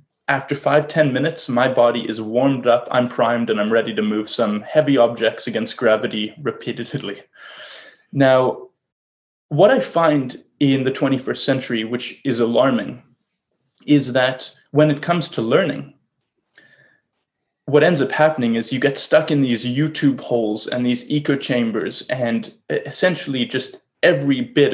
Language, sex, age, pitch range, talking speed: English, male, 20-39, 120-150 Hz, 145 wpm